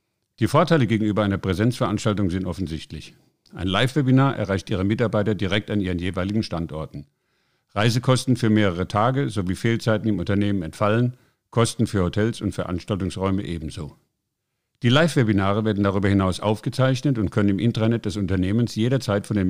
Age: 50-69